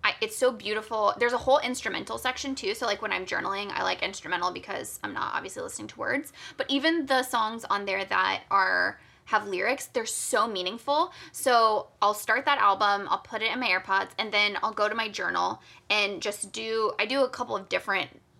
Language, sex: English, female